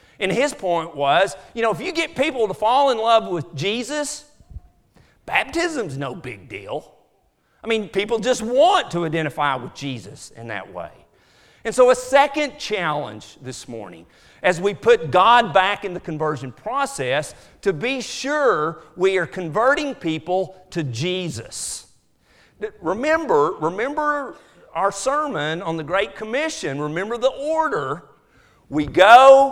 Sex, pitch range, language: male, 150-230 Hz, English